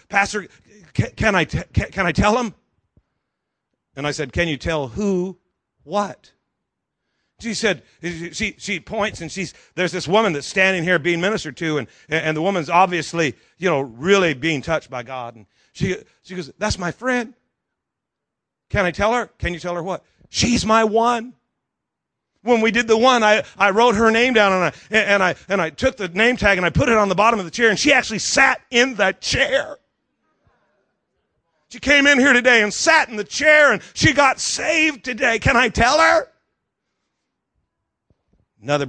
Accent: American